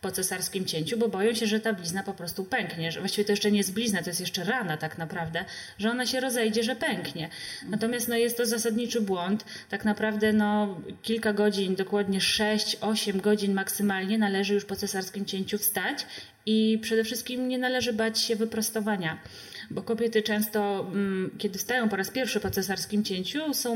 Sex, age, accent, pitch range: female, 30-49, native, 195-230 Hz